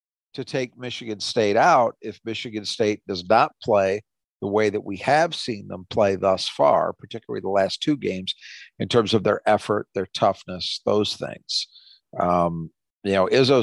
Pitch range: 95-120 Hz